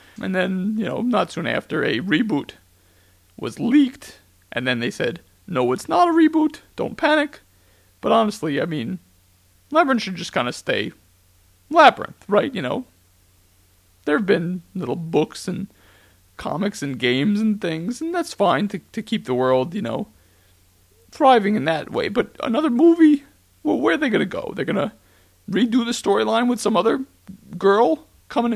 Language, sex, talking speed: English, male, 170 wpm